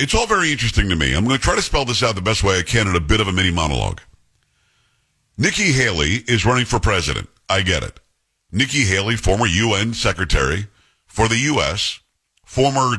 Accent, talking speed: American, 205 wpm